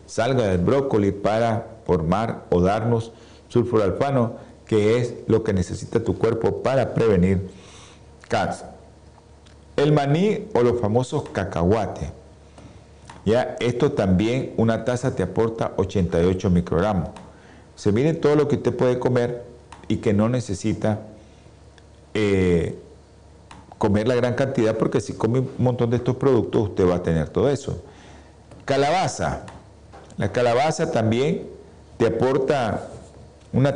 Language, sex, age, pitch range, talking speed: Spanish, male, 50-69, 95-125 Hz, 125 wpm